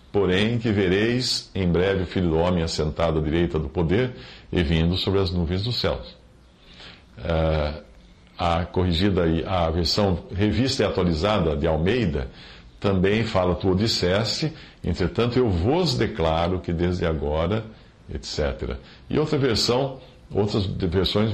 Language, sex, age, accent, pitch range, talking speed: English, male, 50-69, Brazilian, 90-115 Hz, 135 wpm